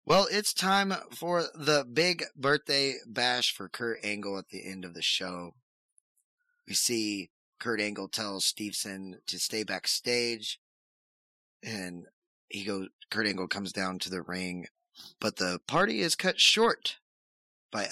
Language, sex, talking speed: English, male, 145 wpm